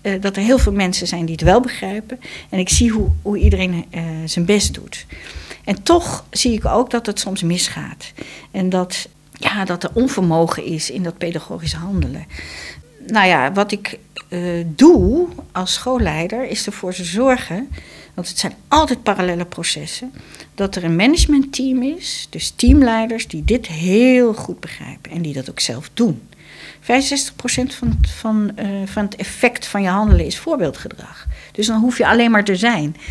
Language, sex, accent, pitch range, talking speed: Dutch, female, Dutch, 175-245 Hz, 170 wpm